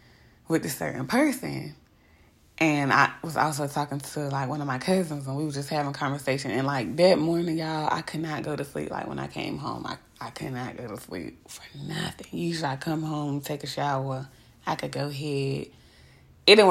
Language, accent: English, American